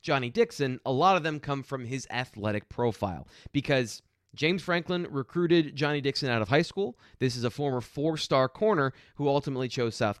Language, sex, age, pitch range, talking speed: English, male, 30-49, 115-150 Hz, 190 wpm